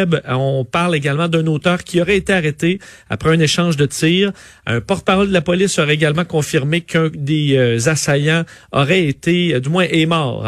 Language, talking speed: French, 180 wpm